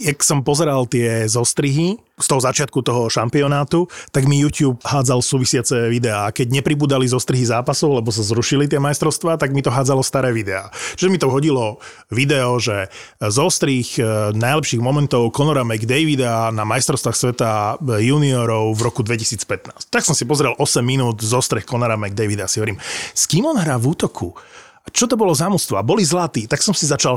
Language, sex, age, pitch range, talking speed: Slovak, male, 30-49, 115-145 Hz, 165 wpm